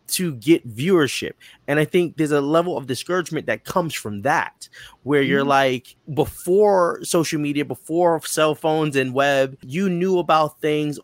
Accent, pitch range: American, 130-165 Hz